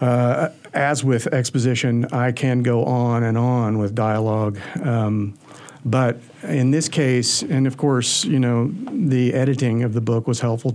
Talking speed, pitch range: 160 wpm, 115-135 Hz